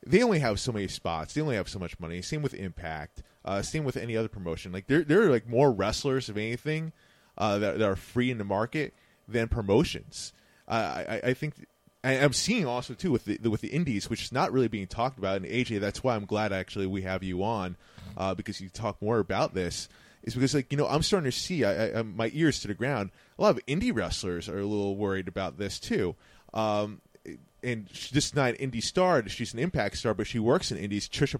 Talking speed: 245 wpm